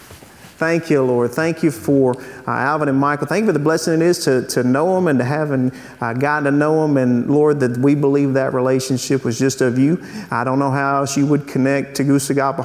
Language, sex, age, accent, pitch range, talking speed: English, male, 40-59, American, 130-150 Hz, 235 wpm